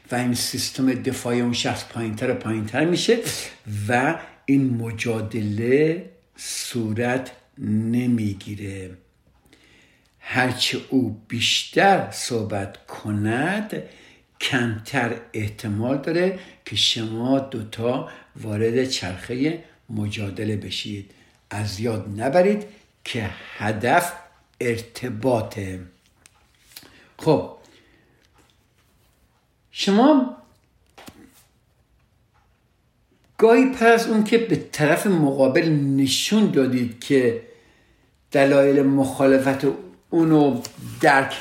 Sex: male